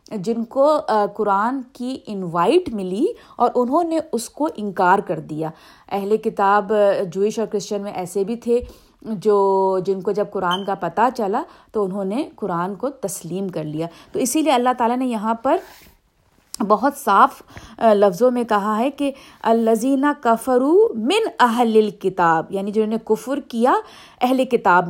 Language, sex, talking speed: Urdu, female, 160 wpm